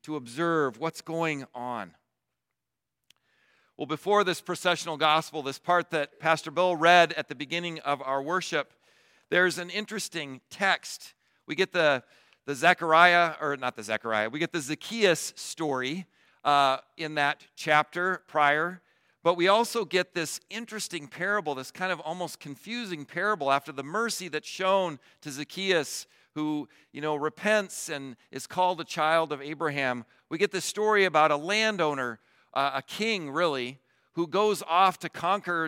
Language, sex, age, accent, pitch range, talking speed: English, male, 50-69, American, 140-175 Hz, 155 wpm